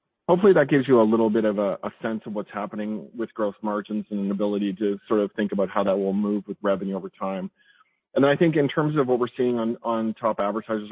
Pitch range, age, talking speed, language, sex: 105-115 Hz, 40-59, 260 wpm, English, male